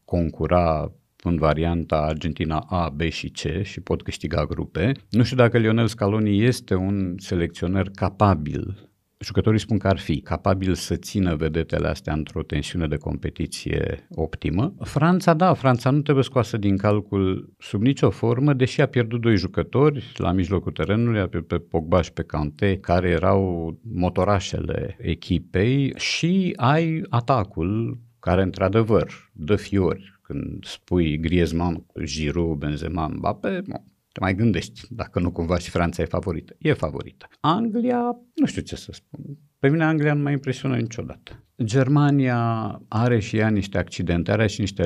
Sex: male